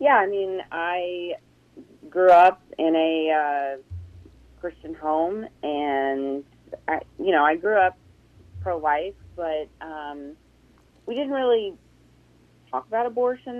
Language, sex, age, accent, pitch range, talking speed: English, female, 30-49, American, 150-180 Hz, 115 wpm